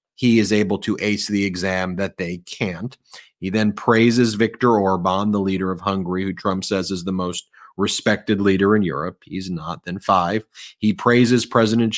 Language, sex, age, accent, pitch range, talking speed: English, male, 30-49, American, 100-120 Hz, 180 wpm